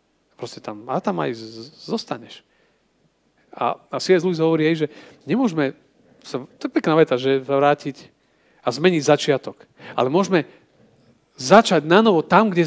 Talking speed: 145 wpm